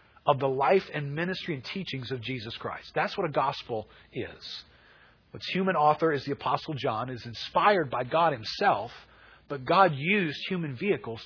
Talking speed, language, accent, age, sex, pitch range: 170 wpm, English, American, 40-59, male, 125-160 Hz